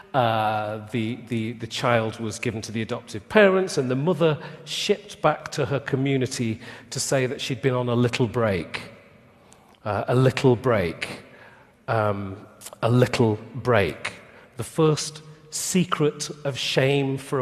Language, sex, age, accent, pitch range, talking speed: English, male, 40-59, British, 115-145 Hz, 145 wpm